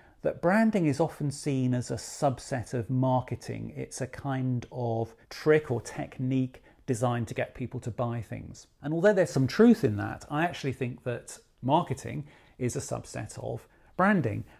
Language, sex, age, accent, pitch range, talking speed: English, male, 40-59, British, 115-140 Hz, 170 wpm